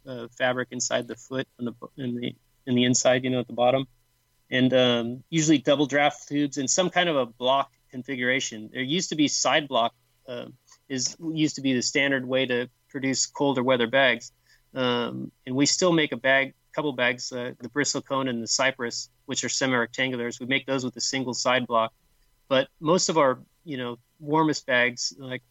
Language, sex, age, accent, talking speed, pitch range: English, male, 30-49, American, 200 wpm, 120-135 Hz